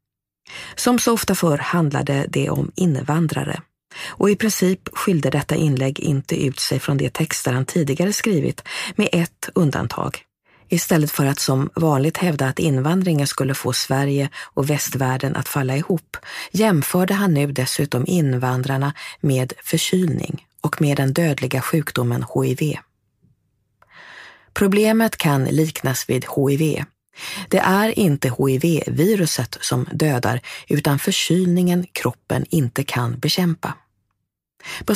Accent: Swedish